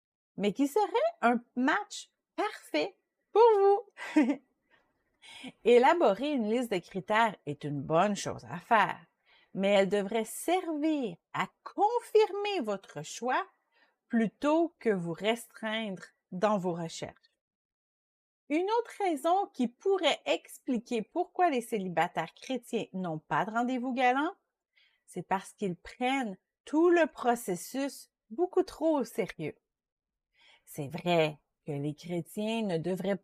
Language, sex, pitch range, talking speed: English, female, 185-290 Hz, 120 wpm